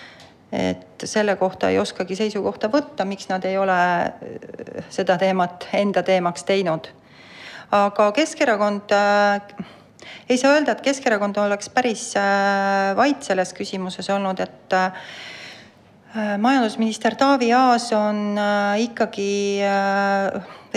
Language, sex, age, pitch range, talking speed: English, female, 40-59, 190-215 Hz, 115 wpm